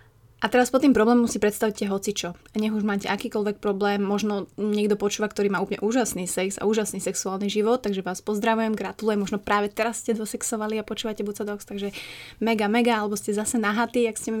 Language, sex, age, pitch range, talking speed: Slovak, female, 20-39, 200-220 Hz, 200 wpm